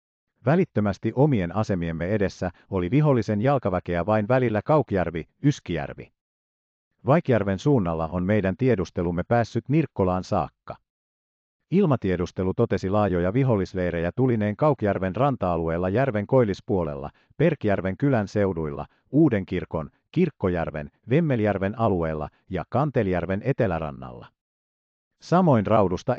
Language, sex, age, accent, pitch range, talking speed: Finnish, male, 50-69, native, 85-125 Hz, 90 wpm